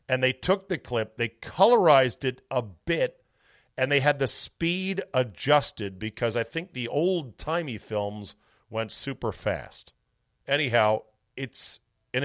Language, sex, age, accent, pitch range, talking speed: English, male, 50-69, American, 110-135 Hz, 135 wpm